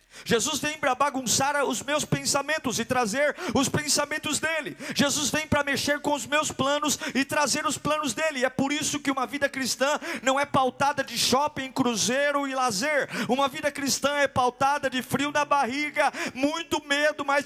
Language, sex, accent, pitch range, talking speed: Portuguese, male, Brazilian, 235-295 Hz, 180 wpm